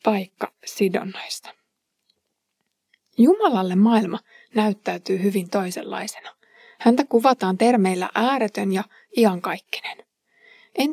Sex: female